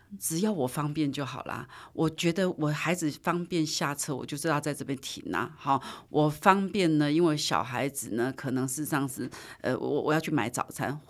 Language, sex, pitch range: Chinese, female, 140-170 Hz